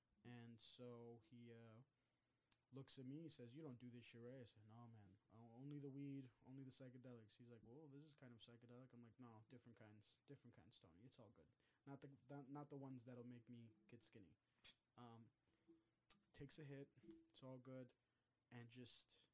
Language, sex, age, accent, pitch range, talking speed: English, male, 20-39, American, 115-130 Hz, 200 wpm